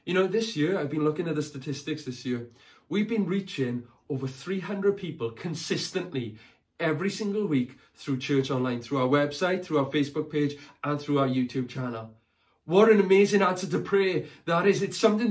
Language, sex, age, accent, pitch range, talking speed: English, male, 30-49, British, 150-200 Hz, 185 wpm